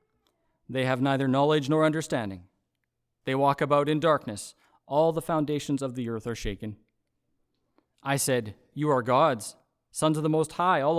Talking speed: 165 wpm